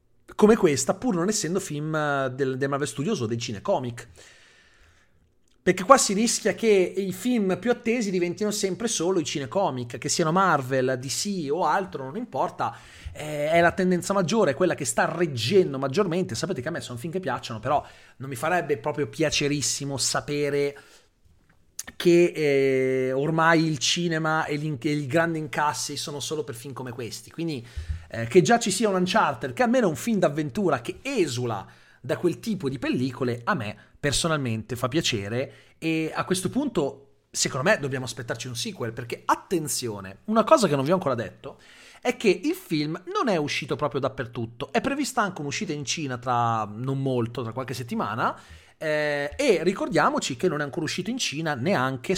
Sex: male